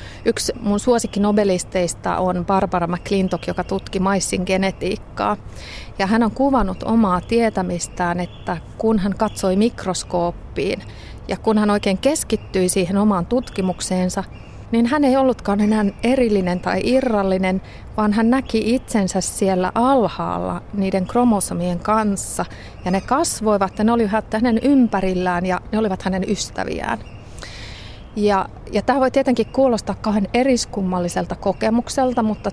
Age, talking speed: 30-49, 125 wpm